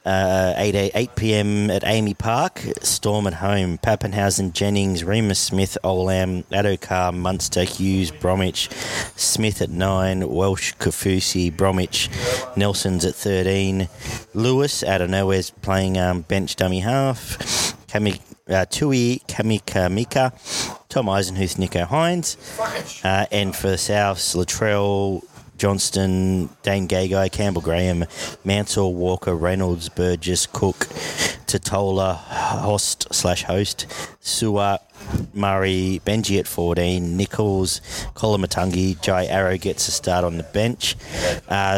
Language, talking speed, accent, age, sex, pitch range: English, 120 wpm, Australian, 30-49, male, 90-105 Hz